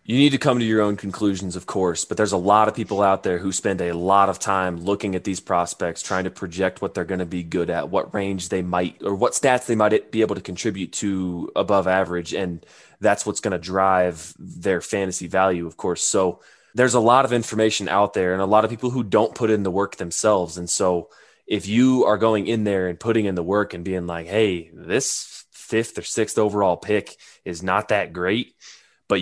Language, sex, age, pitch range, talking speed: English, male, 20-39, 90-110 Hz, 230 wpm